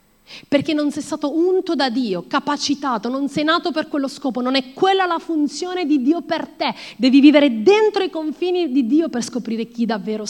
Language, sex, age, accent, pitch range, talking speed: Italian, female, 30-49, native, 230-300 Hz, 200 wpm